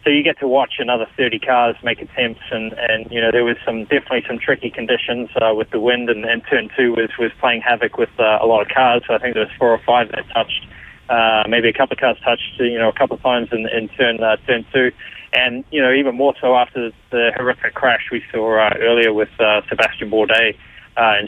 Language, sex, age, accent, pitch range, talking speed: English, male, 20-39, Australian, 115-135 Hz, 250 wpm